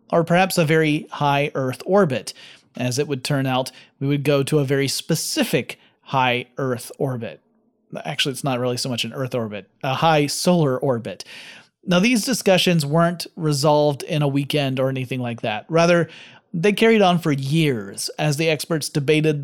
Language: English